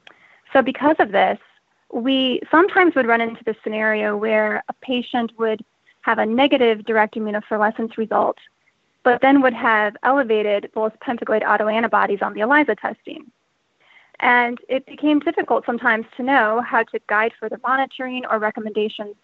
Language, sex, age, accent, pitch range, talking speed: English, female, 20-39, American, 220-270 Hz, 145 wpm